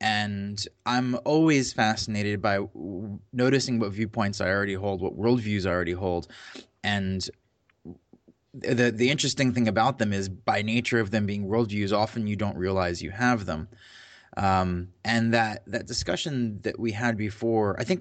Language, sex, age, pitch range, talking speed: English, male, 20-39, 100-120 Hz, 160 wpm